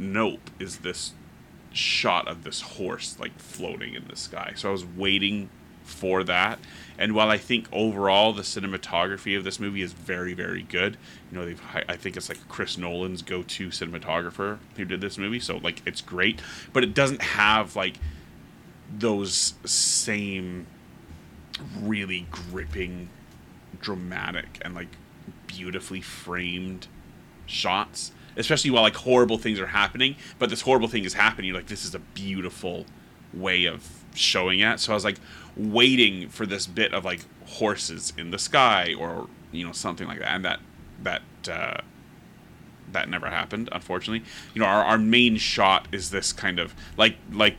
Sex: male